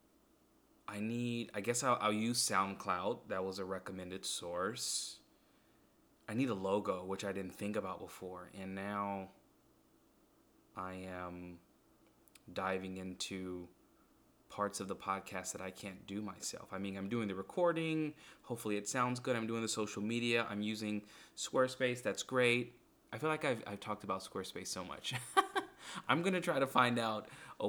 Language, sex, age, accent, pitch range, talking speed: English, male, 20-39, American, 95-115 Hz, 165 wpm